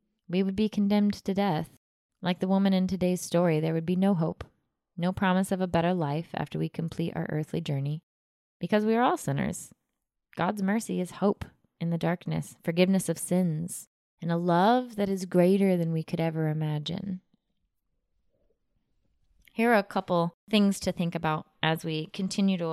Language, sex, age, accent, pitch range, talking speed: English, female, 20-39, American, 165-200 Hz, 175 wpm